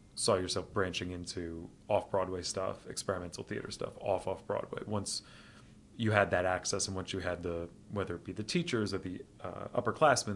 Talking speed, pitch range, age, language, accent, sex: 170 wpm, 90-110 Hz, 30-49, English, American, male